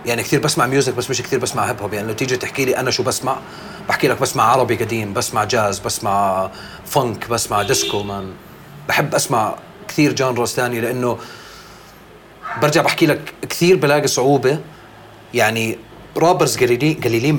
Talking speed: 150 wpm